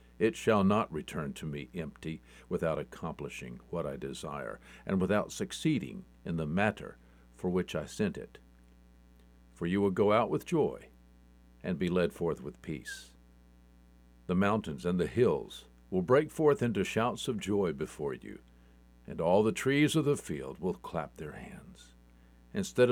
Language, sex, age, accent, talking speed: English, male, 50-69, American, 160 wpm